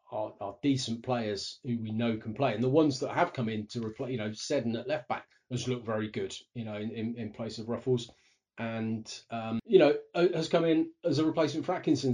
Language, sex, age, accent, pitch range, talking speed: English, male, 30-49, British, 120-145 Hz, 235 wpm